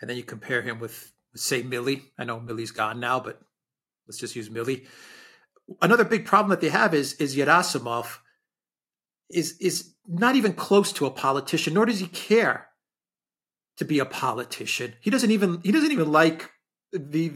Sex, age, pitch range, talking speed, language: male, 40-59, 145-210 Hz, 175 wpm, English